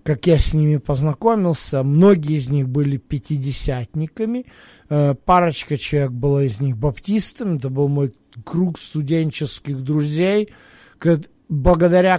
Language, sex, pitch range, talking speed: Russian, male, 145-195 Hz, 115 wpm